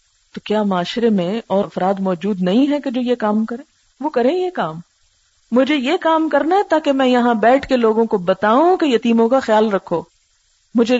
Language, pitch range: Urdu, 200-270 Hz